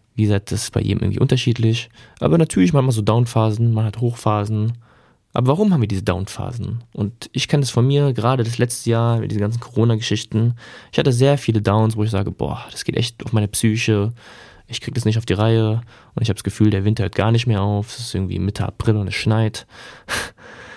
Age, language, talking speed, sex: 20-39, German, 230 wpm, male